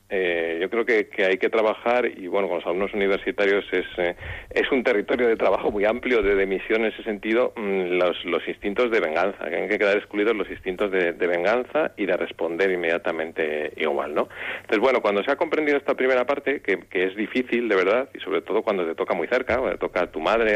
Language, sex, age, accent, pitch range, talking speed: Spanish, male, 40-59, Spanish, 90-120 Hz, 230 wpm